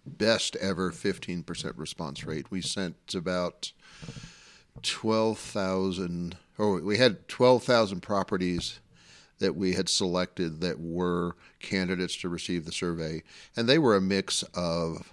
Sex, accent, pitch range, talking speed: male, American, 90-100 Hz, 125 wpm